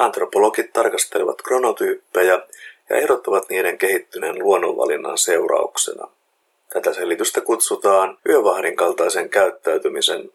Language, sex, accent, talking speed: Finnish, male, native, 85 wpm